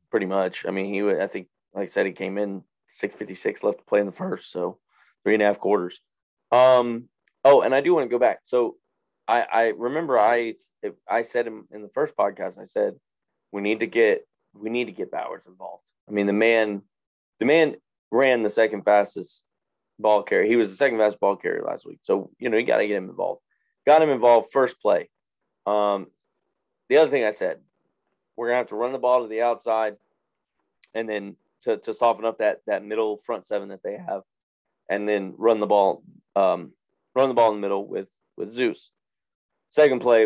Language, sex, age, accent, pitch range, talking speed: English, male, 20-39, American, 100-125 Hz, 215 wpm